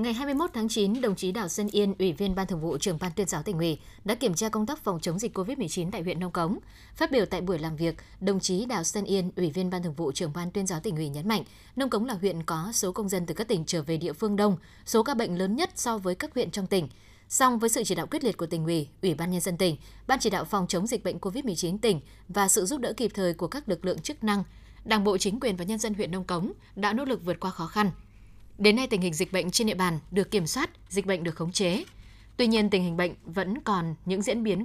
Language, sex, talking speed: Vietnamese, female, 285 wpm